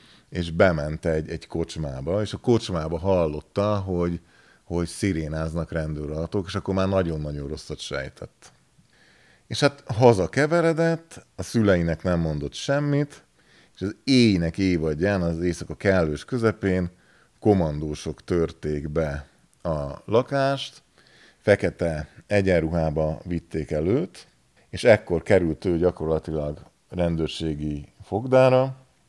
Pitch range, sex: 80-100 Hz, male